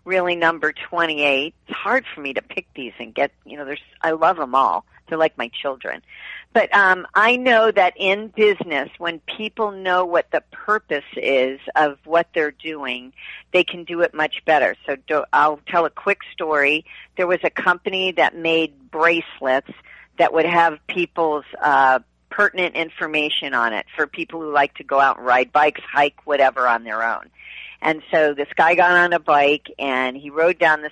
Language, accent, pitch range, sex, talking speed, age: English, American, 140-170 Hz, female, 190 wpm, 50-69